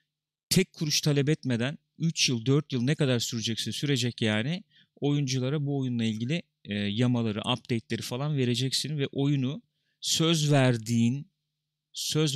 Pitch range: 120-150 Hz